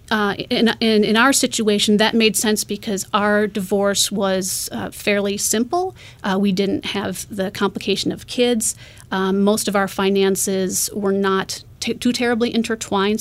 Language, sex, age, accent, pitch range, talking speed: English, female, 30-49, American, 195-220 Hz, 160 wpm